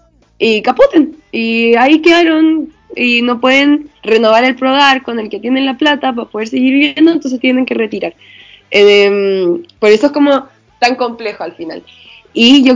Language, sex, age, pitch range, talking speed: Spanish, female, 20-39, 200-270 Hz, 170 wpm